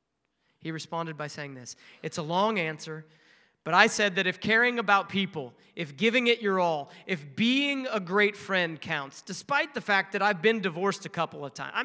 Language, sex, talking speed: English, male, 205 wpm